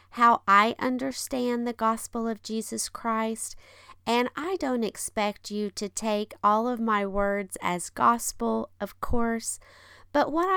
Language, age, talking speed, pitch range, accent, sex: English, 40-59, 140 wpm, 180-235 Hz, American, female